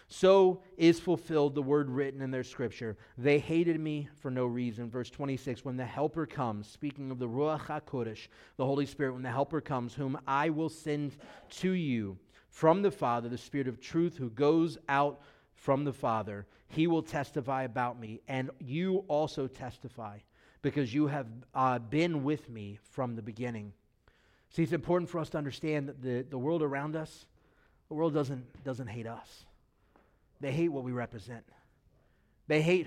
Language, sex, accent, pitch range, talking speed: English, male, American, 130-160 Hz, 175 wpm